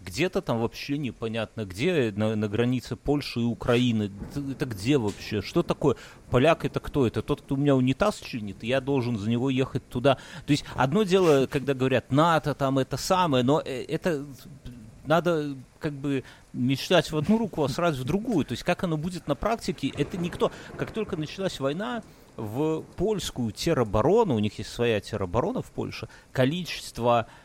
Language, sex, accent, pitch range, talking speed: Russian, male, native, 120-155 Hz, 175 wpm